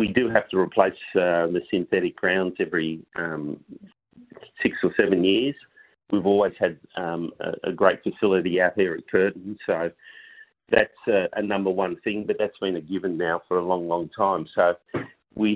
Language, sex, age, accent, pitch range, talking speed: English, male, 40-59, Australian, 85-110 Hz, 180 wpm